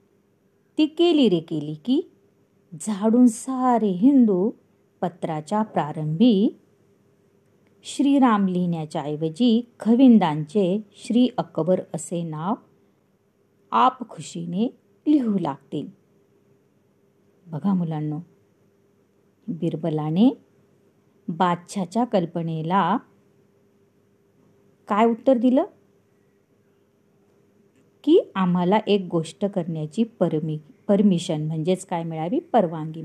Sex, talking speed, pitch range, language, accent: female, 75 wpm, 165-240 Hz, Marathi, native